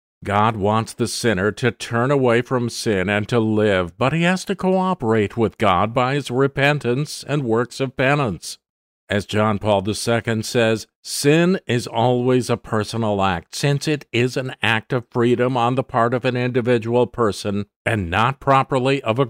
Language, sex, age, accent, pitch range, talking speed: English, male, 50-69, American, 110-140 Hz, 175 wpm